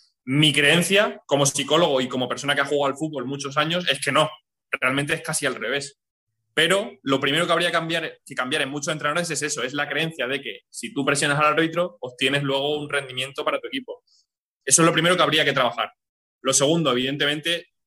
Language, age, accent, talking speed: Spanish, 20-39, Spanish, 215 wpm